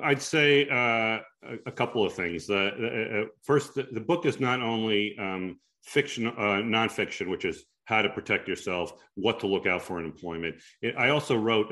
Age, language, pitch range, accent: 40-59, English, 95-130 Hz, American